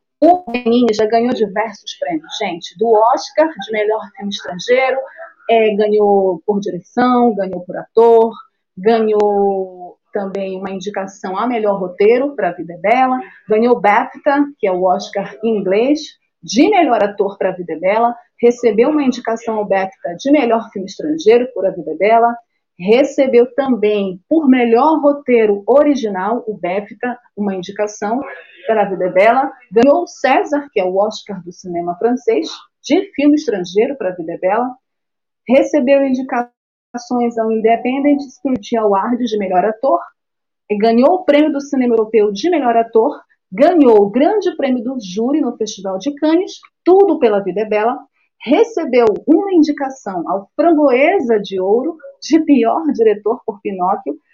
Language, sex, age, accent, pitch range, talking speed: Portuguese, female, 40-59, Brazilian, 205-280 Hz, 150 wpm